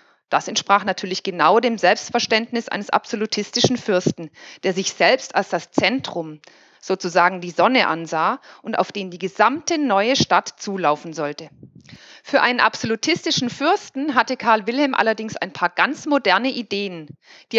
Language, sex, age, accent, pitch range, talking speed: German, female, 40-59, German, 180-260 Hz, 145 wpm